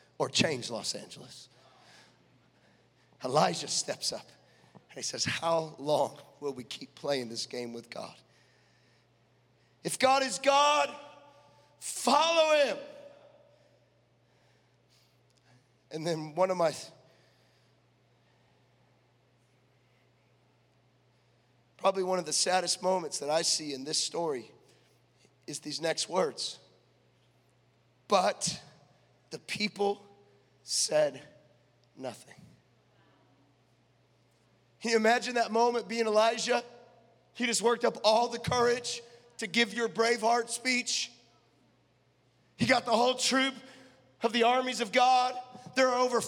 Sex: male